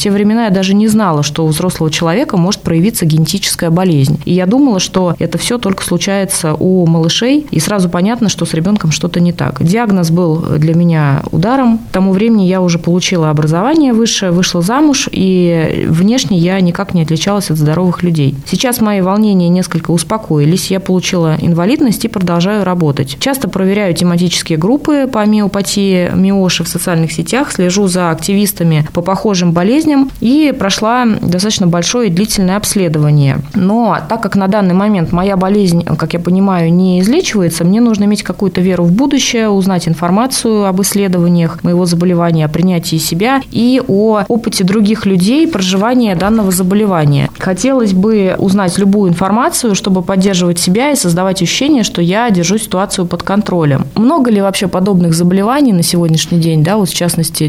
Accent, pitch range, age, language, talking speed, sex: native, 170-210 Hz, 20-39, Russian, 165 wpm, female